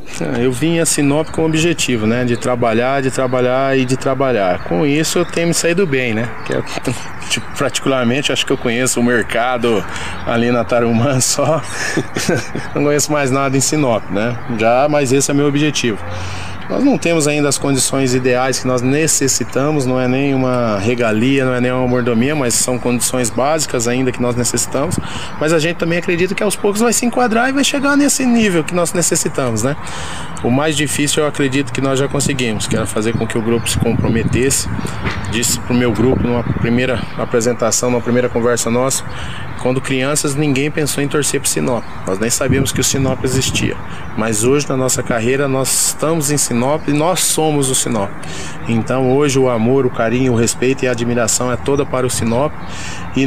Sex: male